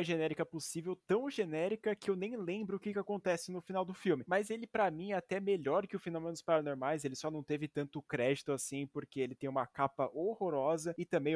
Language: Portuguese